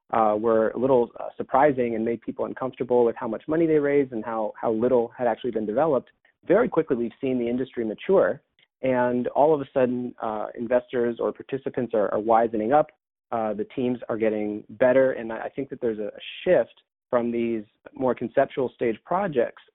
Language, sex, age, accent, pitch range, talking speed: English, male, 30-49, American, 115-135 Hz, 190 wpm